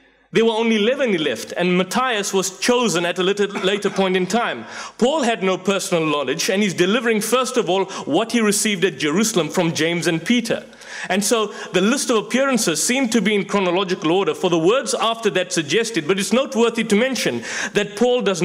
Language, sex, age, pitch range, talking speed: English, male, 30-49, 180-230 Hz, 205 wpm